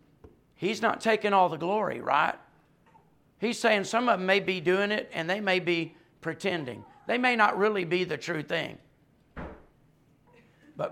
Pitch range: 155-200 Hz